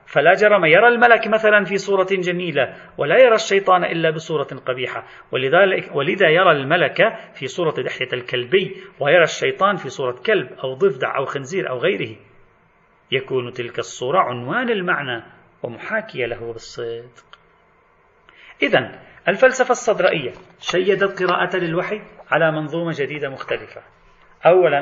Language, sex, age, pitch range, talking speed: Arabic, male, 40-59, 150-210 Hz, 125 wpm